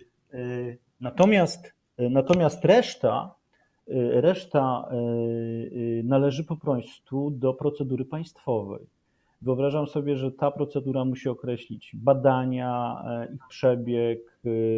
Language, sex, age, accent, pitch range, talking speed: Polish, male, 40-59, native, 115-135 Hz, 80 wpm